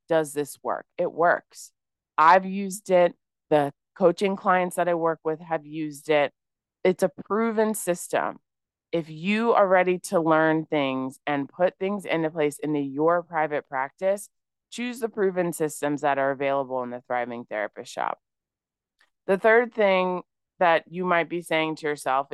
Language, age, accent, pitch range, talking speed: English, 20-39, American, 155-205 Hz, 160 wpm